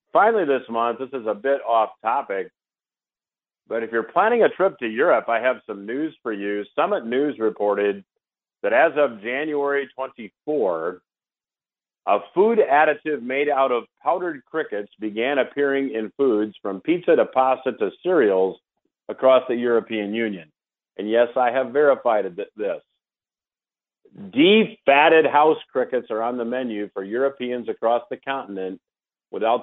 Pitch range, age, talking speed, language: 110-140 Hz, 50-69, 150 wpm, English